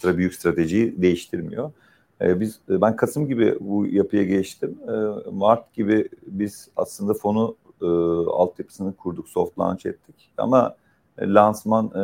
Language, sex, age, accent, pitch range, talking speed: English, male, 40-59, Turkish, 85-110 Hz, 110 wpm